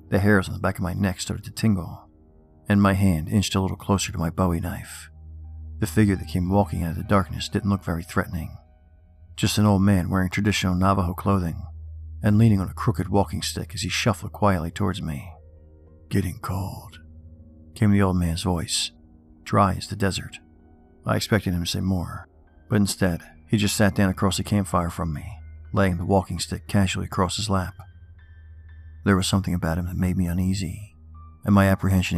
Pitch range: 80-100 Hz